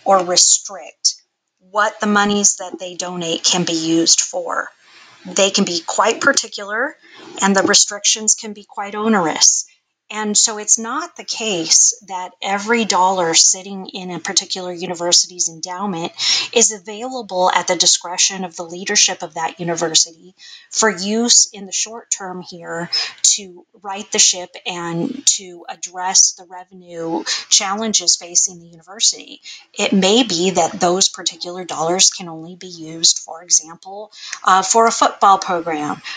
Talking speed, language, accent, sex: 145 wpm, English, American, female